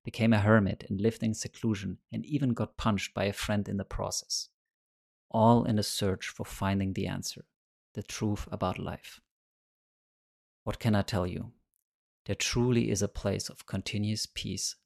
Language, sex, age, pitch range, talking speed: English, male, 30-49, 100-110 Hz, 170 wpm